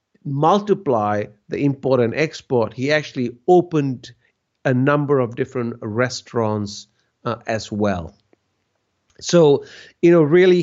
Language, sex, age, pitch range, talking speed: English, male, 50-69, 120-170 Hz, 115 wpm